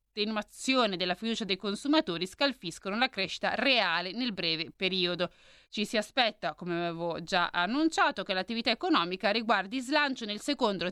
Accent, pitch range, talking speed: native, 185-280 Hz, 135 wpm